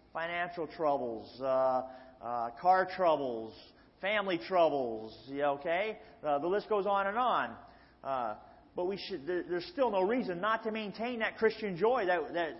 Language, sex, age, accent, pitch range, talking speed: English, male, 40-59, American, 160-210 Hz, 150 wpm